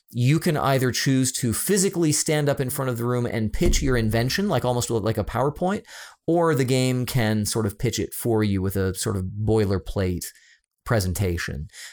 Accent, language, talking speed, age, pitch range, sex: American, English, 190 wpm, 30-49, 105-135 Hz, male